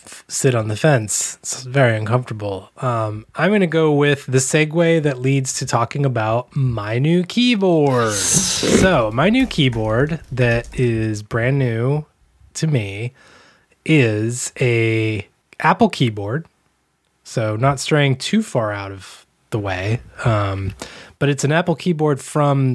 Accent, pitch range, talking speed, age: American, 120-155 Hz, 140 wpm, 20-39